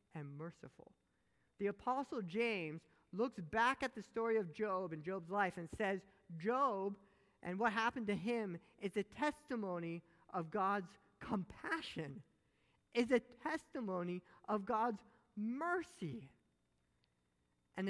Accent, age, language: American, 50-69, English